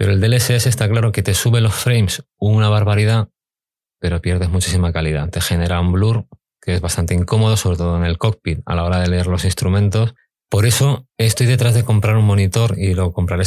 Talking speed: 210 wpm